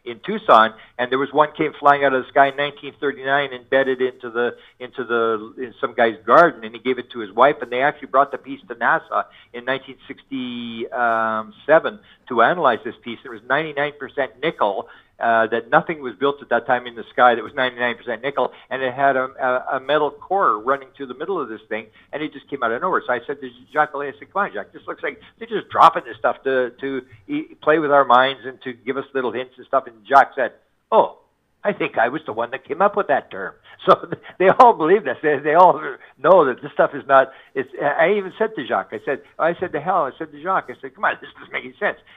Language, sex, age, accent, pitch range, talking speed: English, male, 50-69, American, 125-150 Hz, 245 wpm